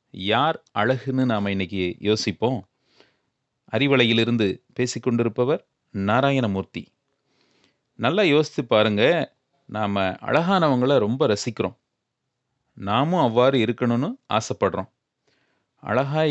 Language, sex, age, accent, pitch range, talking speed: Tamil, male, 30-49, native, 110-135 Hz, 75 wpm